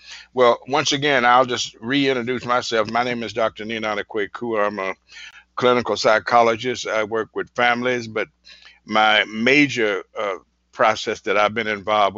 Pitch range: 105-120 Hz